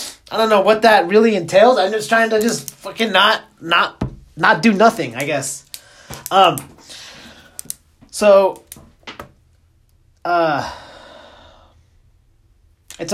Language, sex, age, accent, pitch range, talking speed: English, male, 20-39, American, 110-165 Hz, 110 wpm